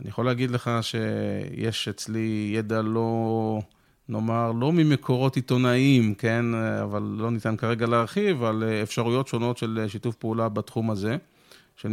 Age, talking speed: 40-59, 135 wpm